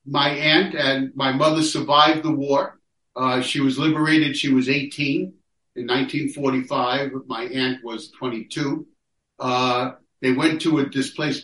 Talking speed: 145 wpm